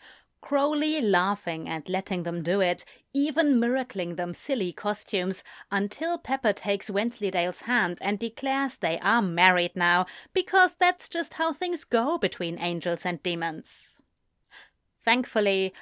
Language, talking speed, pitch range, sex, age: English, 130 wpm, 185-245 Hz, female, 30-49